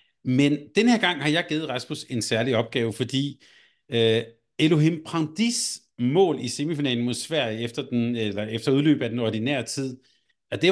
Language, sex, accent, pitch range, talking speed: Danish, male, native, 115-150 Hz, 170 wpm